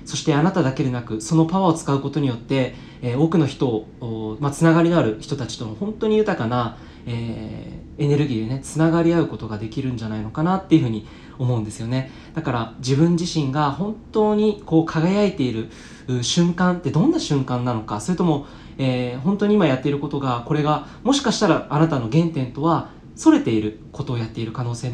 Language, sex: Japanese, male